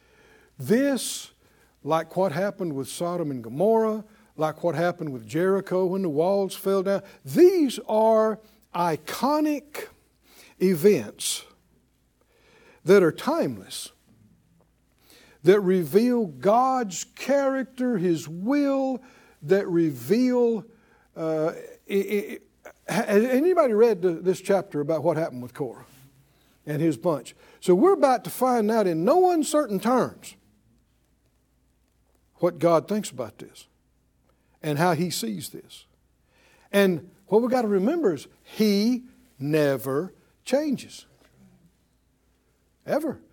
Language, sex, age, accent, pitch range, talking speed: English, male, 60-79, American, 165-240 Hz, 105 wpm